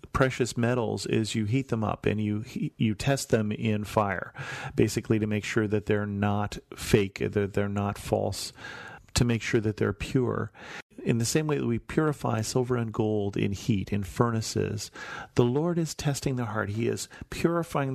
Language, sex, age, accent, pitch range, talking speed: English, male, 40-59, American, 105-125 Hz, 185 wpm